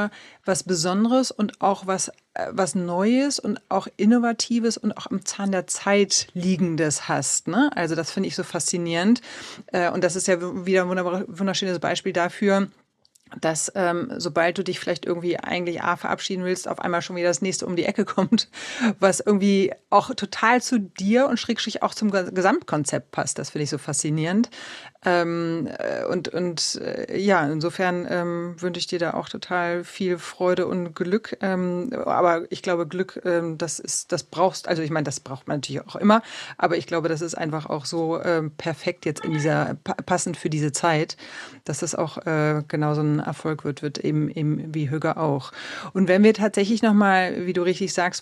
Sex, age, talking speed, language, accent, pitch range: female, 40-59, 190 wpm, German, German, 165-195 Hz